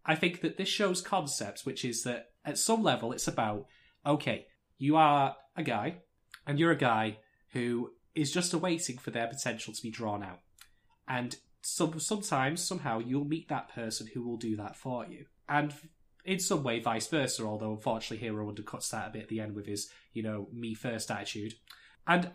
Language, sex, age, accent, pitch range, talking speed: English, male, 20-39, British, 115-150 Hz, 190 wpm